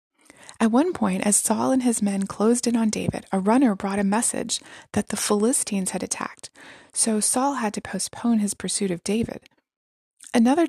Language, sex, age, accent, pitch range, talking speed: English, female, 20-39, American, 200-245 Hz, 180 wpm